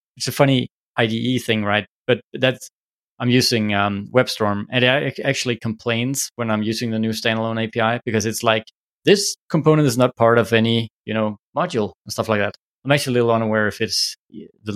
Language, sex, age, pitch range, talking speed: English, male, 20-39, 105-120 Hz, 195 wpm